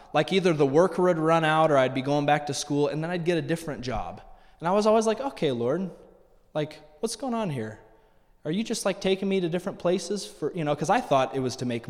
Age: 20-39